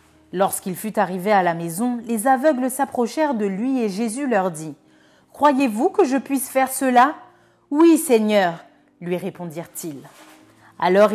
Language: French